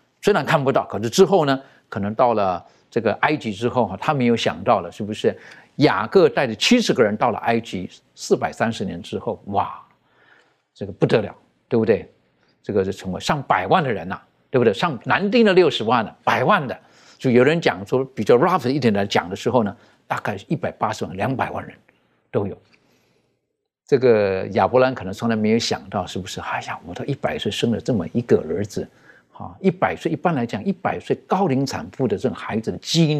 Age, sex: 50-69, male